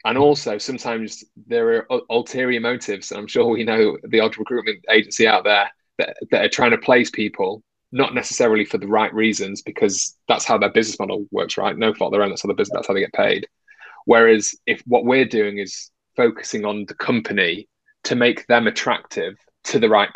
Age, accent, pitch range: 20-39, British, 100-140 Hz